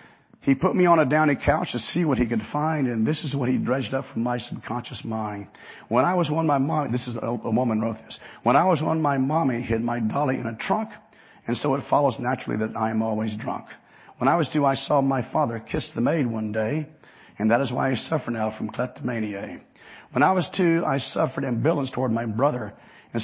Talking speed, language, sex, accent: 235 wpm, English, male, American